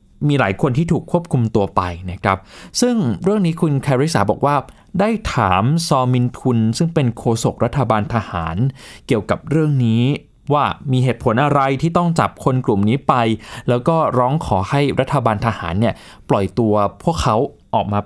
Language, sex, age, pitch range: Thai, male, 20-39, 110-155 Hz